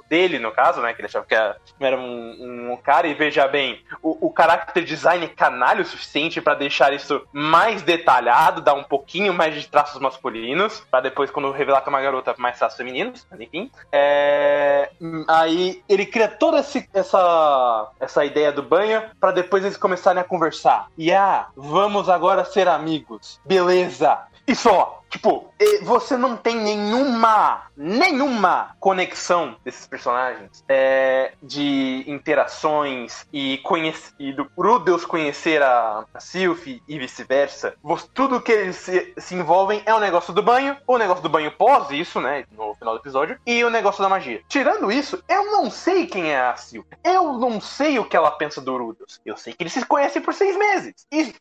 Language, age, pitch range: Portuguese, 20-39, 145-230 Hz